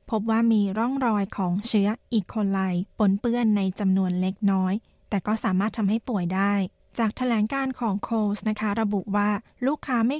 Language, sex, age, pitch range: Thai, female, 20-39, 195-230 Hz